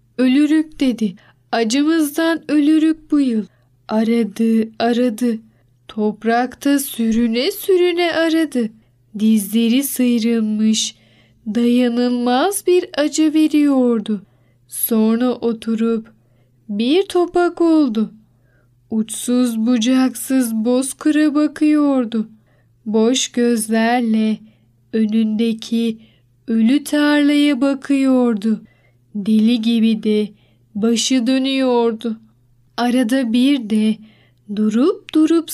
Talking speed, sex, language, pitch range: 75 wpm, female, Turkish, 220-275 Hz